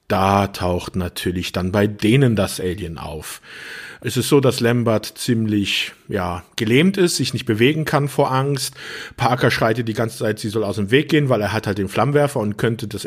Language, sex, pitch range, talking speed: German, male, 105-135 Hz, 200 wpm